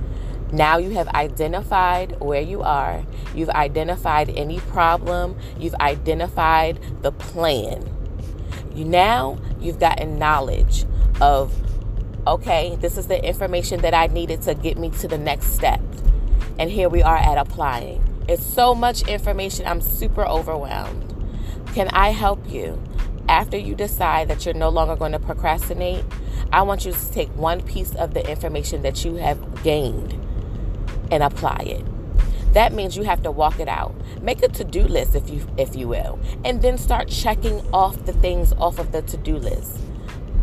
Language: English